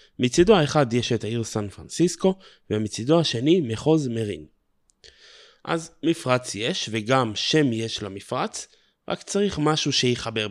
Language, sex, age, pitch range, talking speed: Hebrew, male, 20-39, 115-160 Hz, 125 wpm